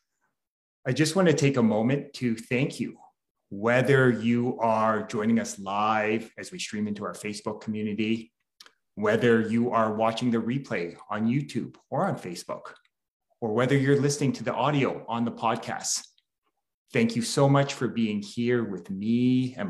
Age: 30-49